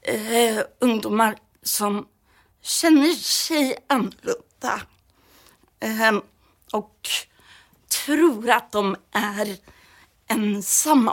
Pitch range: 210-255 Hz